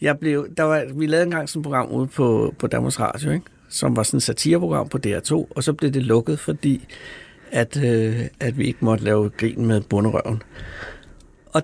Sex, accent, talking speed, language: male, native, 210 wpm, Danish